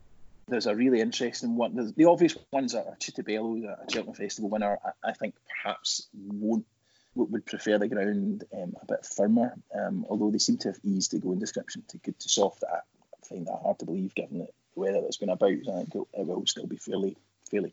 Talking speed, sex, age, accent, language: 210 wpm, male, 20-39, British, English